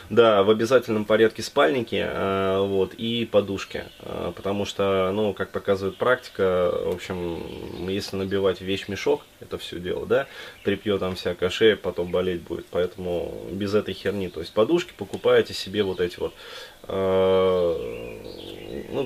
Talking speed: 140 wpm